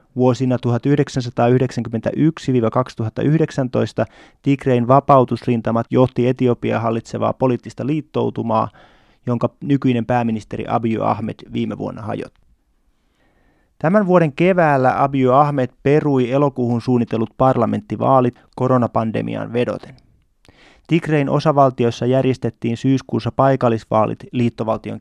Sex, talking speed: male, 80 wpm